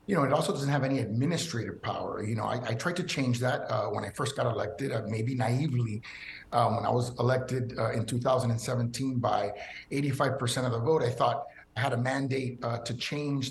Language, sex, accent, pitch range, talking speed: English, male, American, 125-145 Hz, 210 wpm